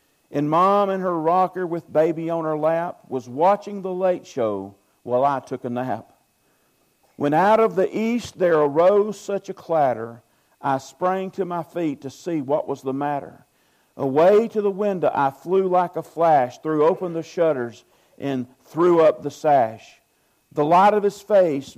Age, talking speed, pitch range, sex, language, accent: 50-69, 175 wpm, 140-185 Hz, male, English, American